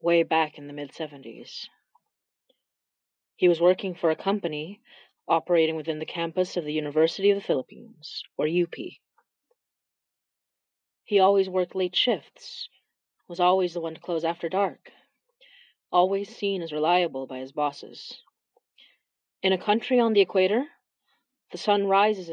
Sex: female